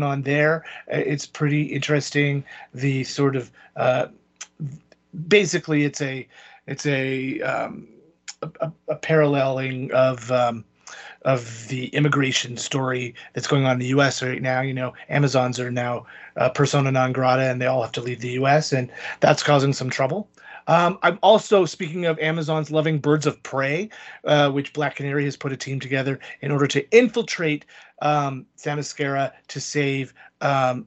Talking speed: 160 wpm